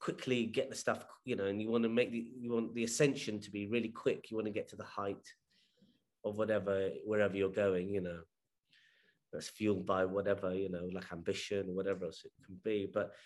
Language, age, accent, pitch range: English, 30-49, British, 95-115 Hz